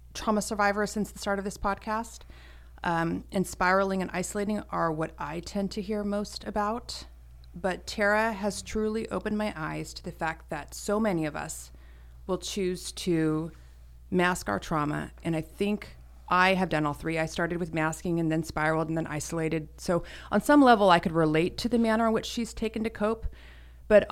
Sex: female